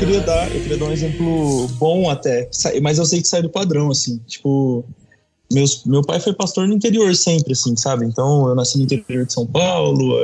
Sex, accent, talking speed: male, Brazilian, 215 wpm